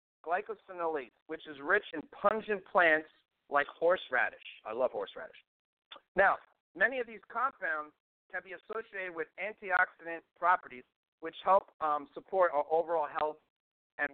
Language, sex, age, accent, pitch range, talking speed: English, male, 50-69, American, 150-200 Hz, 130 wpm